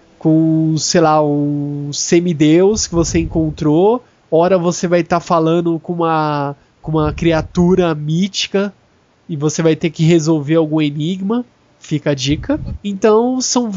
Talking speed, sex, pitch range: 135 wpm, male, 160-195 Hz